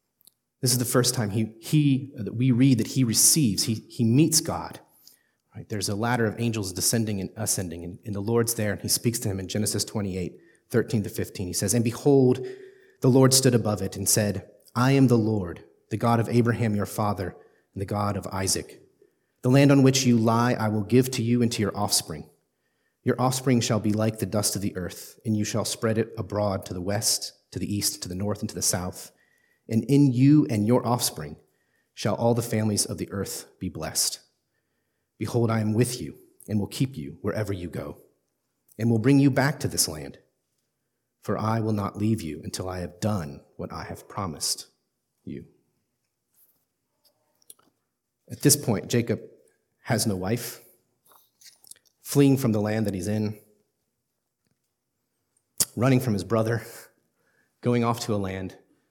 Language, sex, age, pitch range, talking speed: English, male, 30-49, 100-120 Hz, 185 wpm